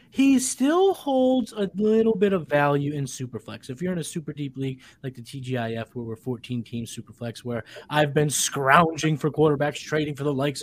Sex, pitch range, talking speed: male, 130-170 Hz, 190 wpm